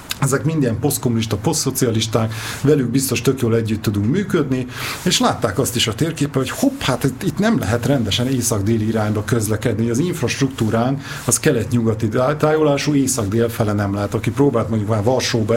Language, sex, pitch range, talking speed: Hungarian, male, 115-140 Hz, 160 wpm